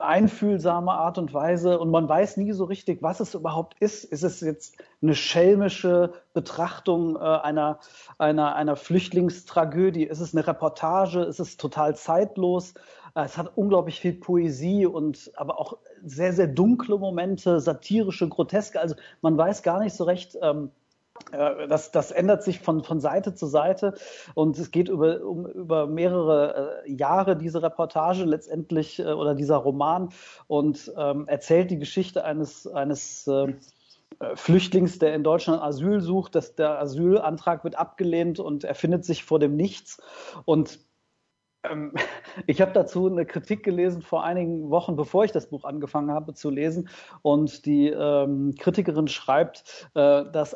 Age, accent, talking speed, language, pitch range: 40-59, German, 145 wpm, German, 150-180 Hz